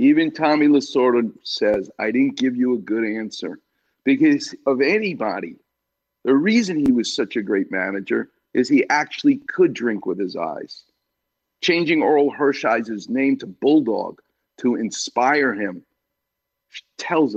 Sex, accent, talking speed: male, American, 140 wpm